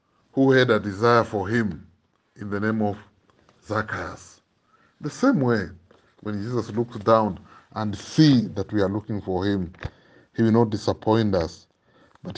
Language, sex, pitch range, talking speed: English, male, 100-120 Hz, 155 wpm